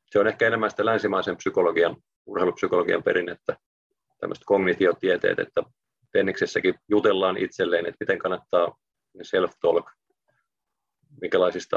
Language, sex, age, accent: Finnish, male, 40-59, native